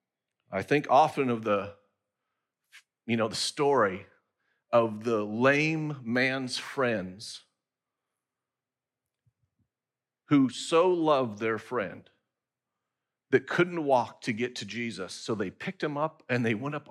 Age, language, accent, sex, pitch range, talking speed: 40-59, English, American, male, 110-140 Hz, 125 wpm